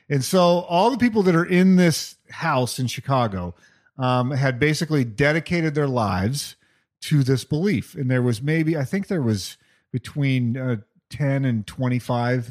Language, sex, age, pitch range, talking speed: English, male, 40-59, 120-155 Hz, 165 wpm